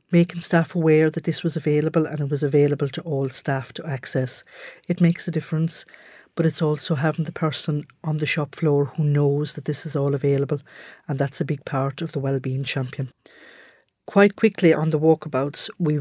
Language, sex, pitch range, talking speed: English, female, 140-155 Hz, 195 wpm